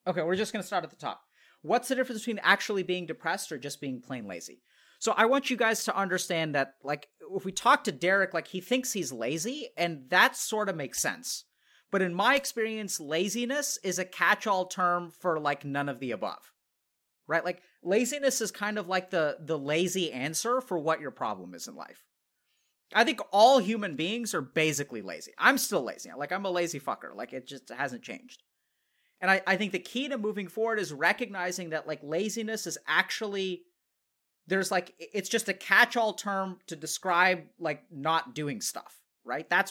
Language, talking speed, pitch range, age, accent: English, 200 wpm, 160-220 Hz, 30-49, American